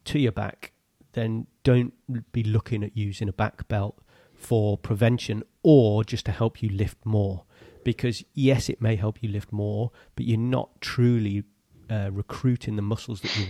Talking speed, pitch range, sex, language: 175 wpm, 105-120 Hz, male, English